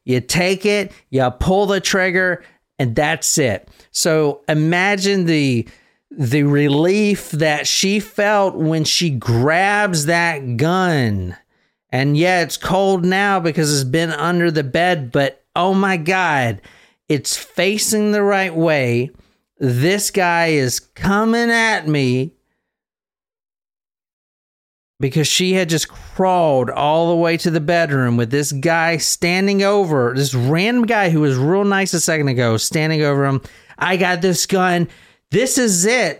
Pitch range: 140-185 Hz